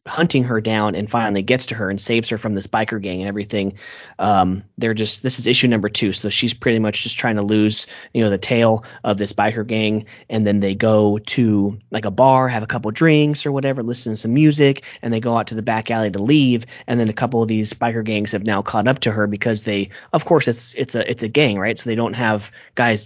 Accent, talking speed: American, 260 wpm